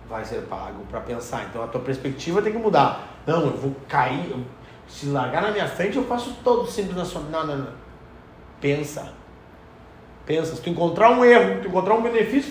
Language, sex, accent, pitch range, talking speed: Portuguese, male, Brazilian, 150-235 Hz, 200 wpm